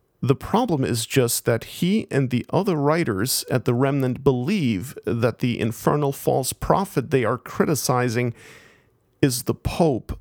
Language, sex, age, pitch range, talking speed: English, male, 40-59, 120-150 Hz, 145 wpm